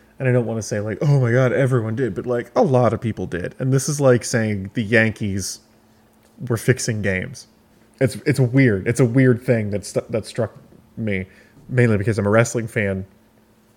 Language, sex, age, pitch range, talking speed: English, male, 20-39, 105-120 Hz, 205 wpm